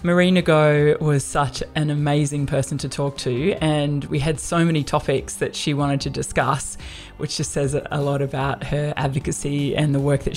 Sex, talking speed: female, 190 wpm